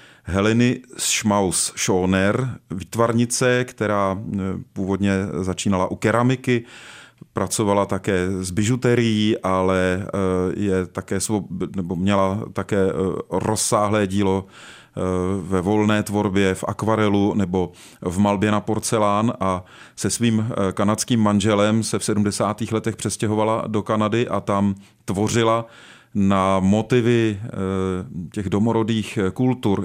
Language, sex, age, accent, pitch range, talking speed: Czech, male, 30-49, native, 95-110 Hz, 105 wpm